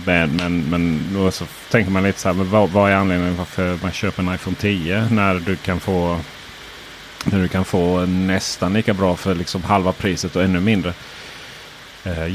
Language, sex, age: Swedish, male, 30-49